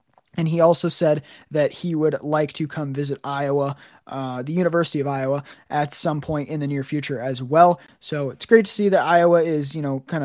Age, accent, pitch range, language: 20-39, American, 145-180 Hz, English